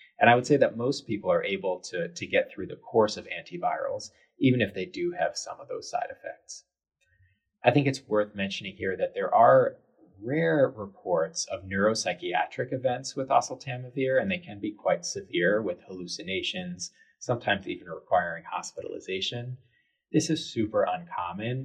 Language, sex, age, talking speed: English, male, 30-49, 165 wpm